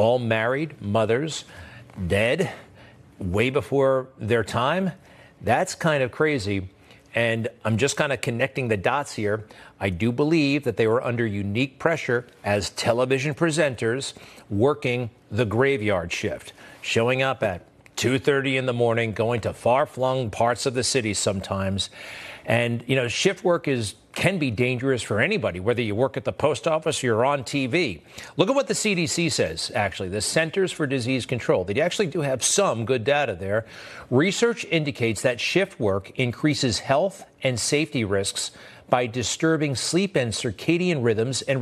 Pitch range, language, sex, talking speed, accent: 115-150 Hz, English, male, 160 wpm, American